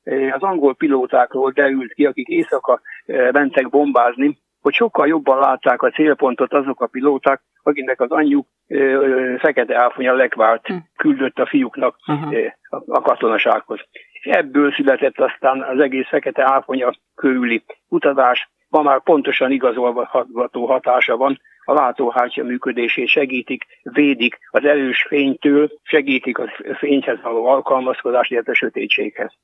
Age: 60-79